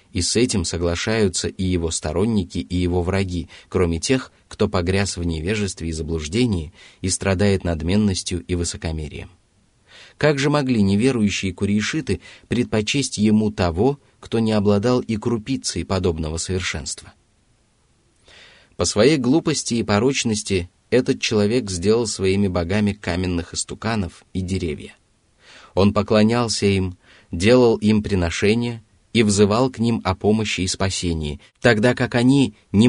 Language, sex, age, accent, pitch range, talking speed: Russian, male, 30-49, native, 90-115 Hz, 130 wpm